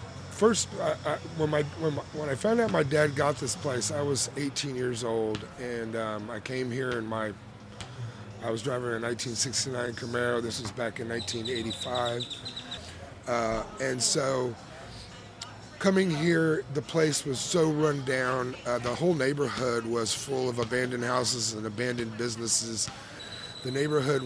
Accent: American